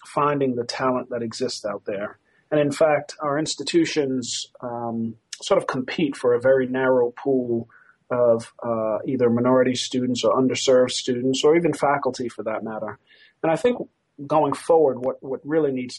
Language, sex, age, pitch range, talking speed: English, male, 40-59, 115-145 Hz, 165 wpm